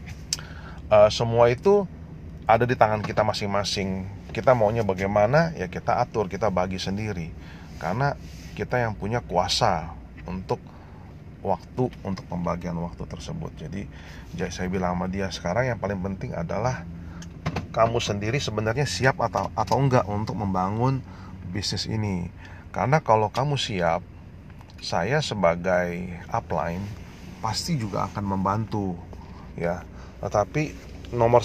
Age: 30-49